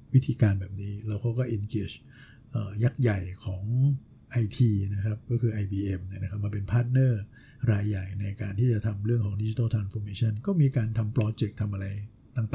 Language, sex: Thai, male